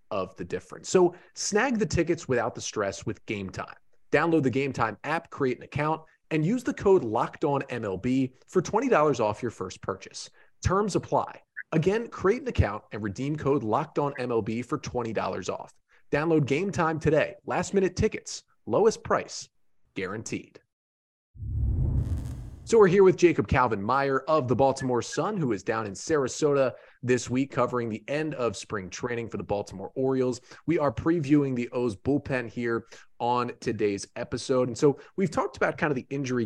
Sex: male